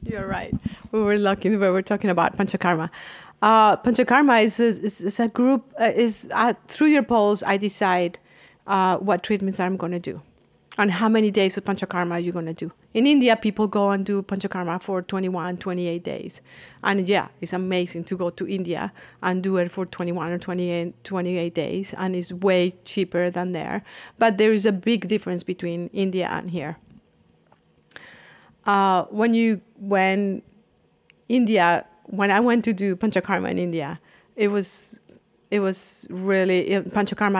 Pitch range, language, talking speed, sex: 180-210 Hz, English, 170 wpm, female